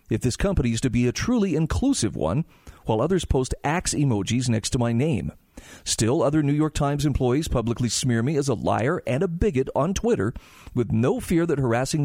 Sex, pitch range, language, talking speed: male, 120-170 Hz, English, 205 wpm